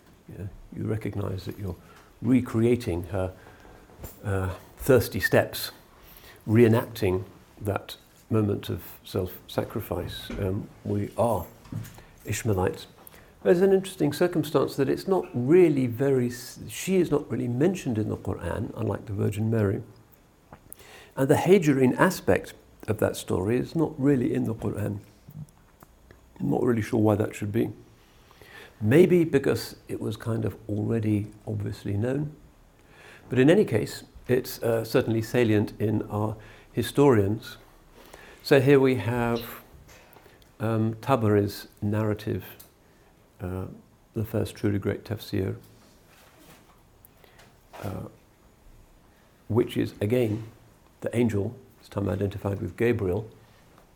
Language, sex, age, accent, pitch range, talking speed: English, male, 50-69, British, 100-120 Hz, 115 wpm